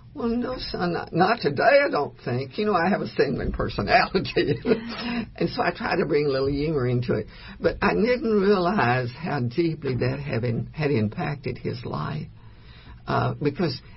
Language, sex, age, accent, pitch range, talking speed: English, female, 60-79, American, 115-145 Hz, 175 wpm